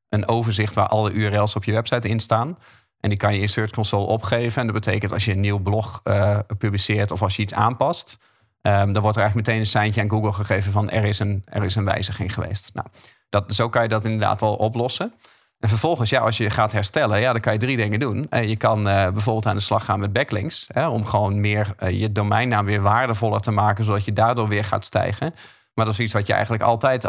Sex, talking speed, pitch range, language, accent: male, 230 wpm, 105-115 Hz, Dutch, Dutch